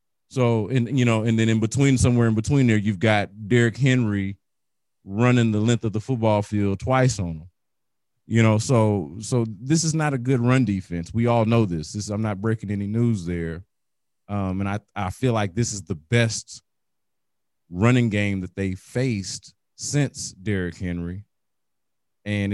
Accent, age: American, 30-49